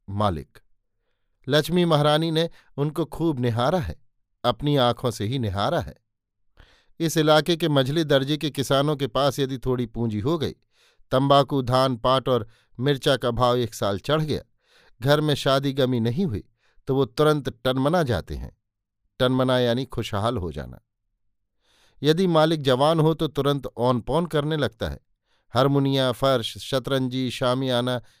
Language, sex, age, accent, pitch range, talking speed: Hindi, male, 50-69, native, 120-145 Hz, 150 wpm